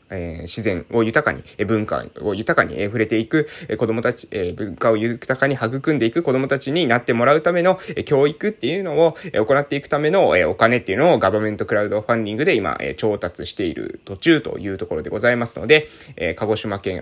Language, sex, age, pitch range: Japanese, male, 20-39, 110-145 Hz